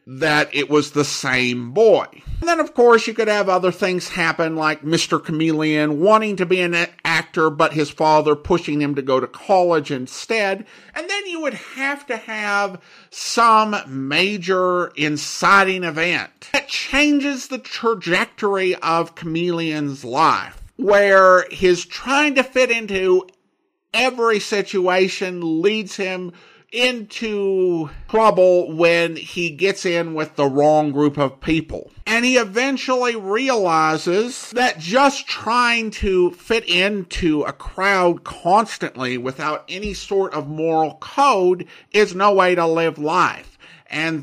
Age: 50-69